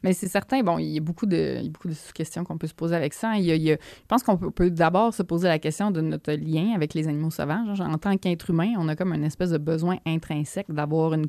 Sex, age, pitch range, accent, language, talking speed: female, 20-39, 155-185 Hz, Canadian, French, 305 wpm